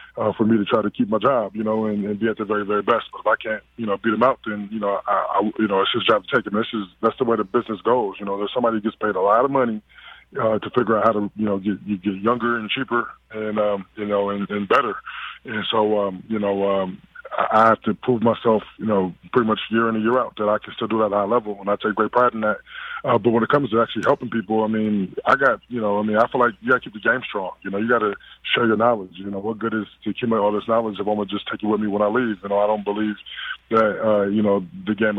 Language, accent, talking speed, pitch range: English, American, 310 wpm, 105-115 Hz